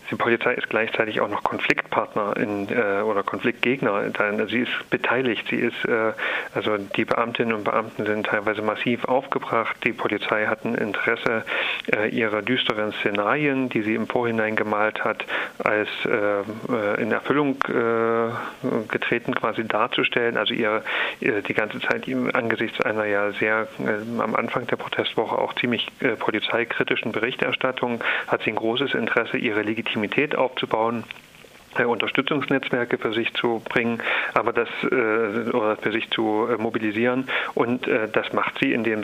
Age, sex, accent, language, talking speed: 40-59, male, German, German, 145 wpm